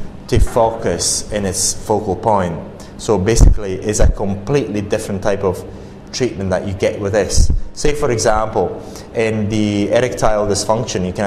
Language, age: English, 20-39